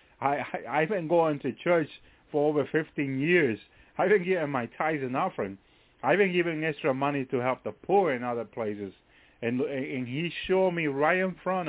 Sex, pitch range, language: male, 125-170 Hz, English